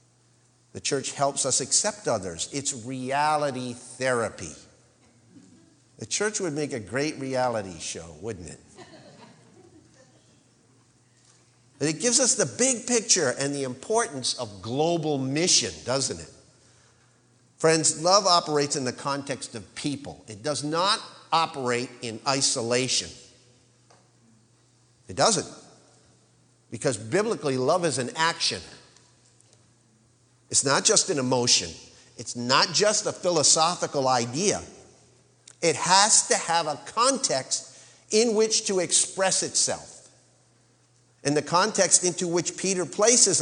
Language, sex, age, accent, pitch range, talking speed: English, male, 50-69, American, 120-160 Hz, 115 wpm